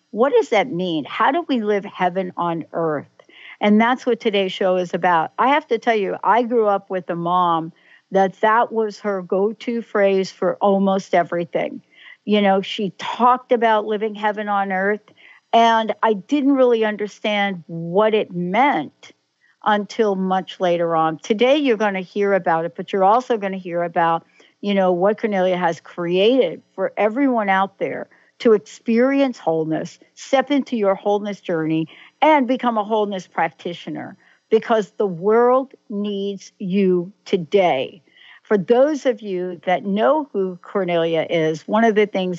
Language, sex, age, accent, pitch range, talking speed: English, female, 60-79, American, 185-235 Hz, 165 wpm